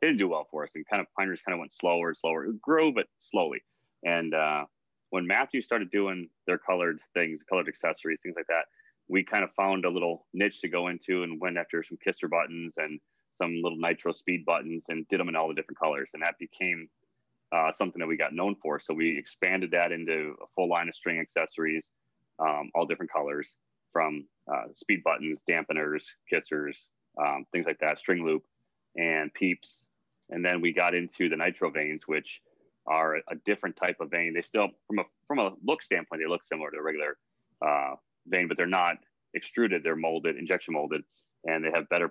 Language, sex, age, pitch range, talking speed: English, male, 30-49, 80-90 Hz, 205 wpm